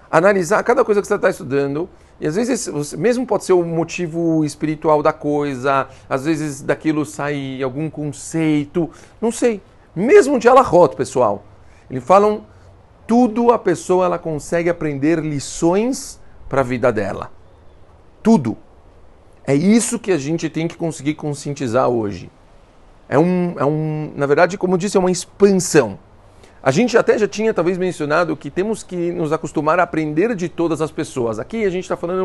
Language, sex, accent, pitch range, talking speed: Portuguese, male, Brazilian, 130-190 Hz, 165 wpm